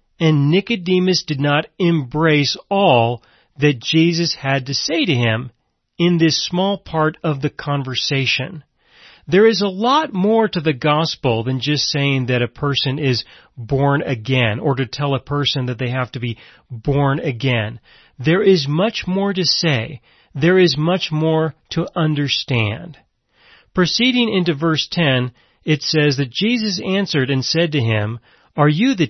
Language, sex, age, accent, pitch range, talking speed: English, male, 40-59, American, 135-180 Hz, 160 wpm